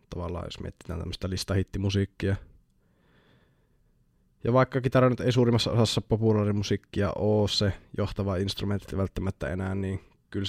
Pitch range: 90-105 Hz